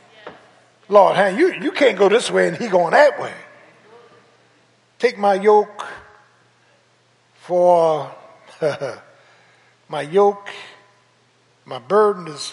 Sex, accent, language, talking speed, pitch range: male, American, English, 110 wpm, 165-245 Hz